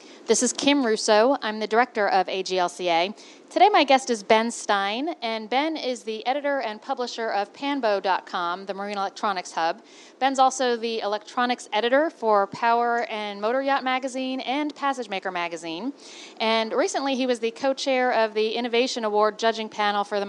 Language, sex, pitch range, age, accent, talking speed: English, female, 200-270 Hz, 40-59, American, 165 wpm